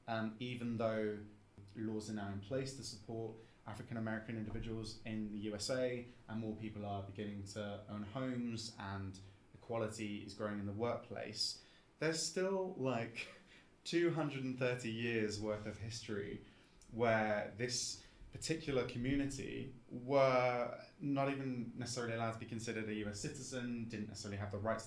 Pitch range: 105-125 Hz